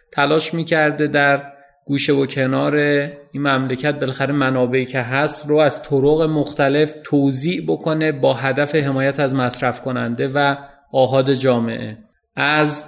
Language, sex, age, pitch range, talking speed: Persian, male, 30-49, 130-150 Hz, 135 wpm